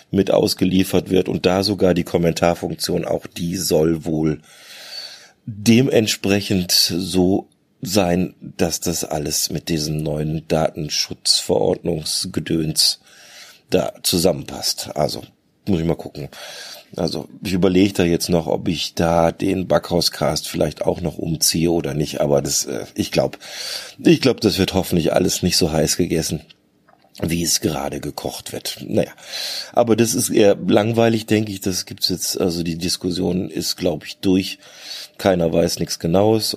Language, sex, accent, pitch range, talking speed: German, male, German, 85-105 Hz, 145 wpm